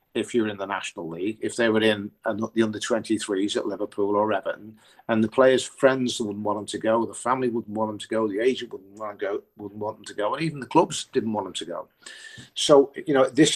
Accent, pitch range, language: British, 105-125 Hz, English